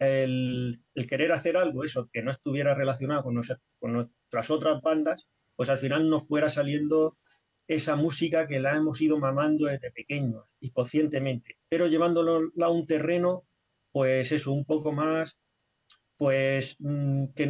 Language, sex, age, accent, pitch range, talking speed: Spanish, male, 30-49, Spanish, 130-160 Hz, 155 wpm